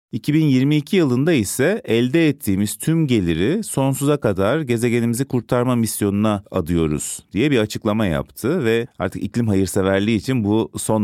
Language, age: Turkish, 30-49